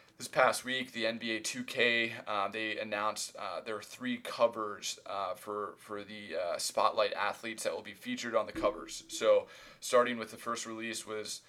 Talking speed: 180 wpm